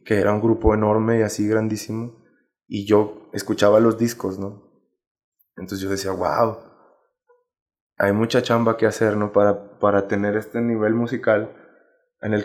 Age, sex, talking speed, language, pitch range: 20-39, male, 150 wpm, Spanish, 105-120 Hz